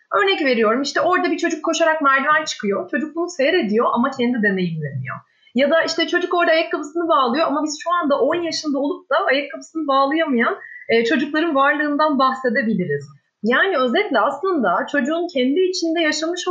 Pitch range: 230-335 Hz